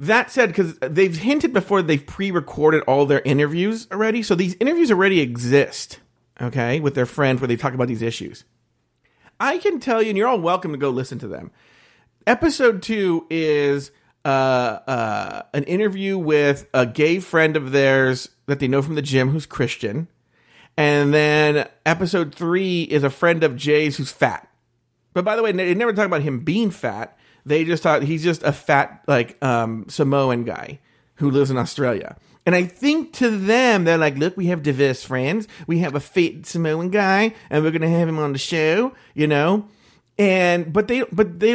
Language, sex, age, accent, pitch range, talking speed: English, male, 40-59, American, 140-205 Hz, 190 wpm